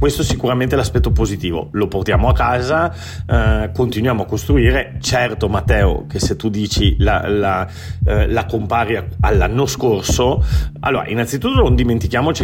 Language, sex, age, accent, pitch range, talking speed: Italian, male, 40-59, native, 95-115 Hz, 145 wpm